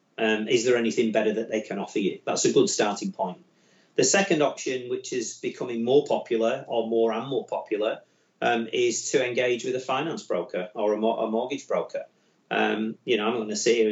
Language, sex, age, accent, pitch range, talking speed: English, male, 40-59, British, 115-155 Hz, 215 wpm